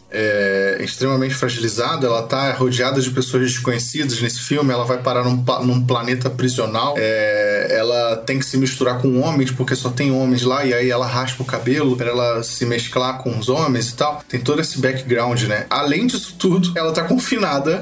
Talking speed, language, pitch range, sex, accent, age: 190 wpm, Portuguese, 120-160 Hz, male, Brazilian, 20-39